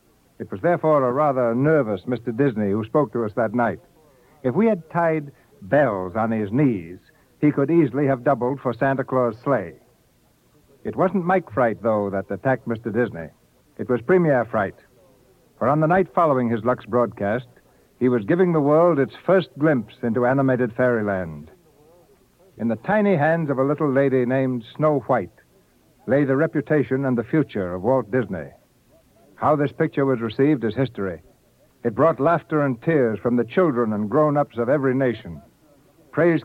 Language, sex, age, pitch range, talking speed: English, male, 60-79, 120-150 Hz, 170 wpm